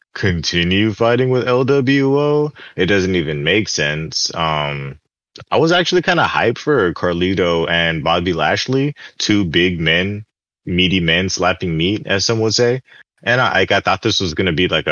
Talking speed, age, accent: 165 wpm, 20-39, American